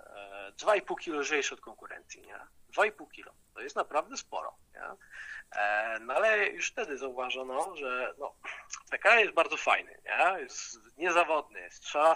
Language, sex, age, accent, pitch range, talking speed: Polish, male, 40-59, native, 120-160 Hz, 145 wpm